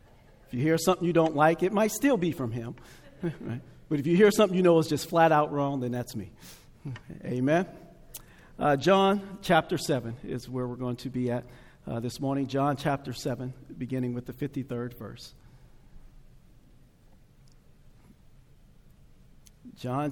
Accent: American